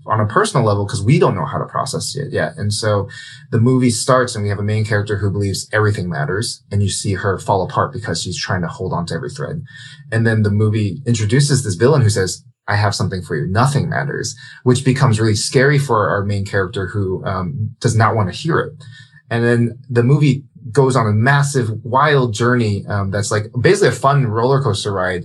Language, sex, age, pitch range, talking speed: English, male, 20-39, 100-130 Hz, 225 wpm